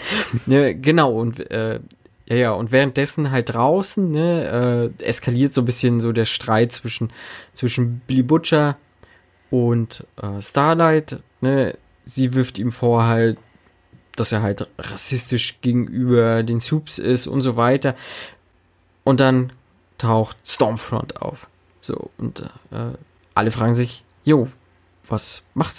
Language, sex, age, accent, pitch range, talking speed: German, male, 20-39, German, 115-140 Hz, 135 wpm